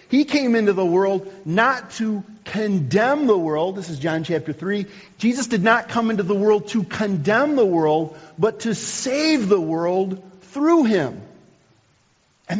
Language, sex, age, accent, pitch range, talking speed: English, male, 40-59, American, 155-210 Hz, 160 wpm